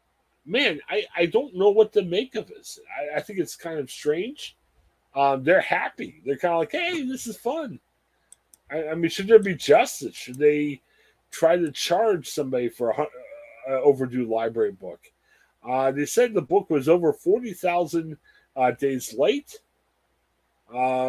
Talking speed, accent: 170 wpm, American